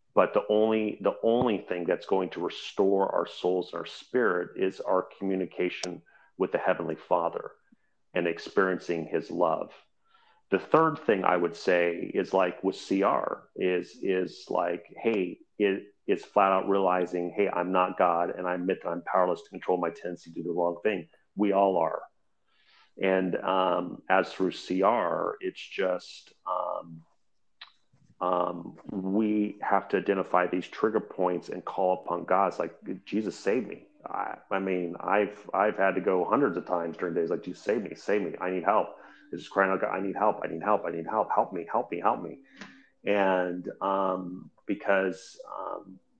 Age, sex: 40-59, male